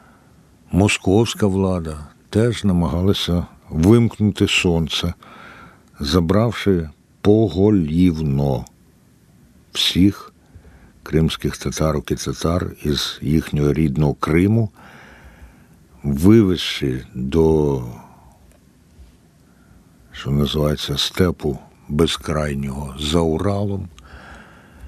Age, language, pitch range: 60-79, Ukrainian, 75-95 Hz